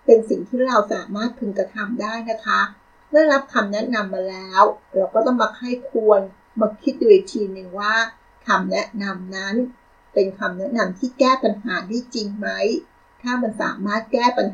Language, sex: Thai, female